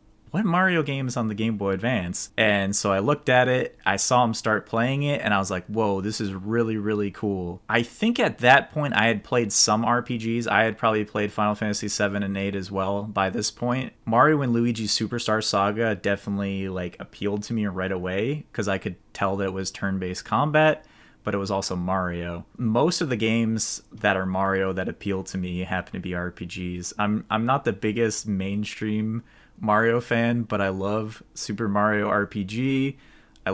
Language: English